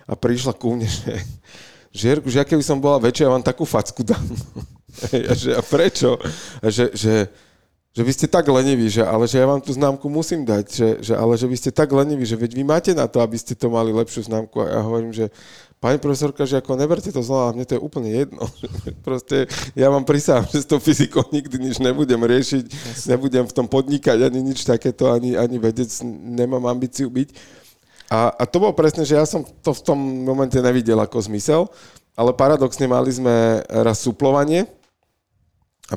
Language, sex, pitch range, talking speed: Slovak, male, 115-140 Hz, 200 wpm